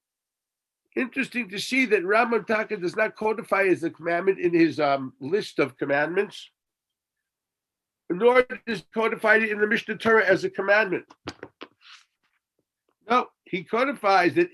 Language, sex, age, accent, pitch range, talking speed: English, male, 50-69, American, 155-225 Hz, 140 wpm